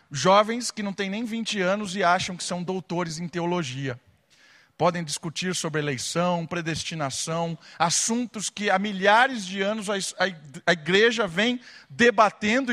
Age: 50-69